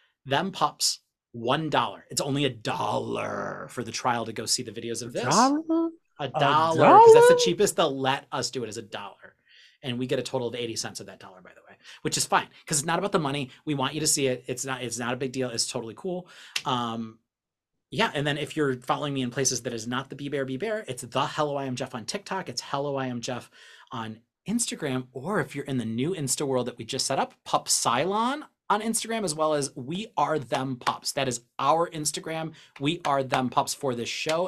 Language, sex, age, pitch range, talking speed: English, male, 30-49, 120-145 Hz, 240 wpm